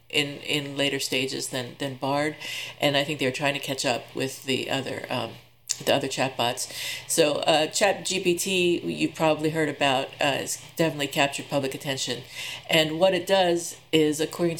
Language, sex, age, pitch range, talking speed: English, female, 50-69, 145-180 Hz, 170 wpm